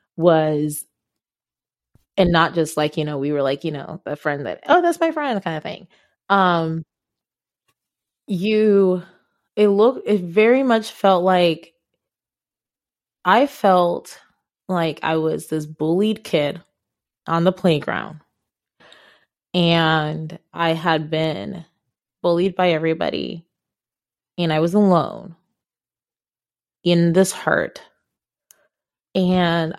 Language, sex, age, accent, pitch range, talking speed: English, female, 20-39, American, 160-190 Hz, 115 wpm